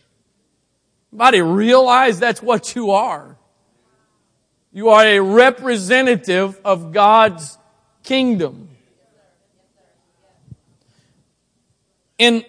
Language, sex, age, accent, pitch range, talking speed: English, male, 40-59, American, 180-230 Hz, 65 wpm